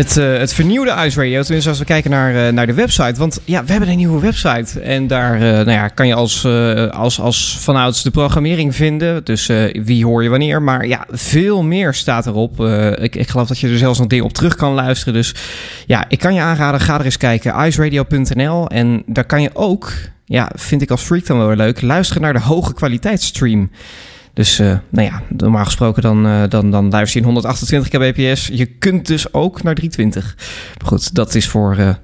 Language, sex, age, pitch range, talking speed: Dutch, male, 20-39, 115-155 Hz, 220 wpm